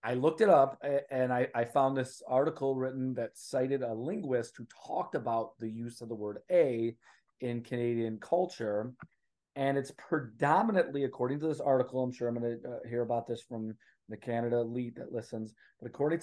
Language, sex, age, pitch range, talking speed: English, male, 30-49, 115-135 Hz, 185 wpm